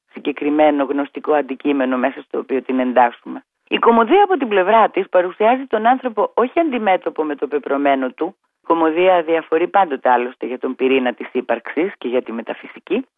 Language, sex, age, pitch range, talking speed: Greek, female, 30-49, 150-240 Hz, 160 wpm